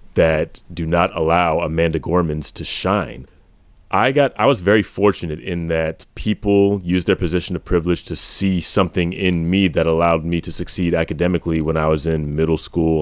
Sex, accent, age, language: male, American, 30-49, English